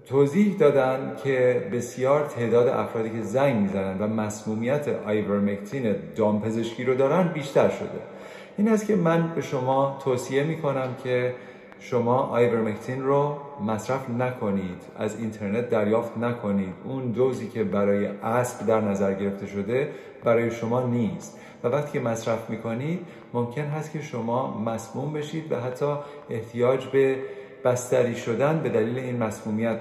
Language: Persian